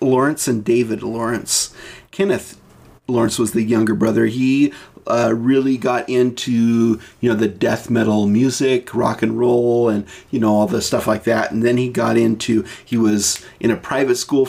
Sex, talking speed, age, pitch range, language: male, 180 wpm, 40-59, 110-130 Hz, English